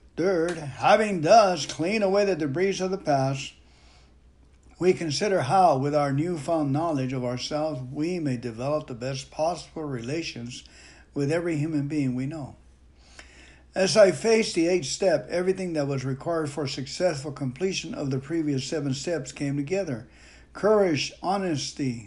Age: 60-79